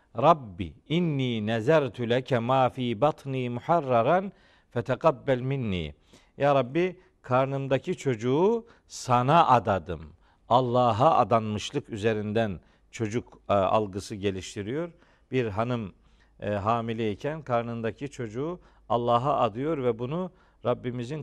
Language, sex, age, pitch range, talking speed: Turkish, male, 50-69, 120-155 Hz, 85 wpm